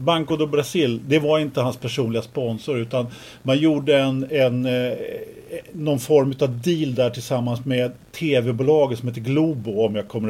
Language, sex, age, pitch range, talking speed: Swedish, male, 50-69, 115-150 Hz, 165 wpm